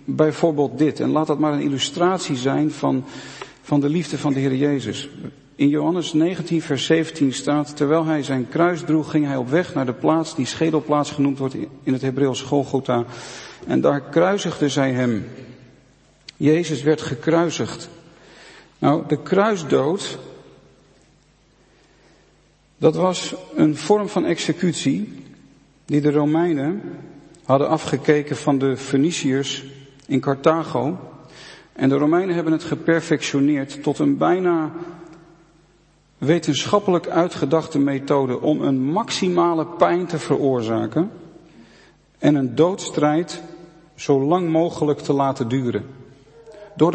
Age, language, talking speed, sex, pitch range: 50-69, Dutch, 125 wpm, male, 140-165 Hz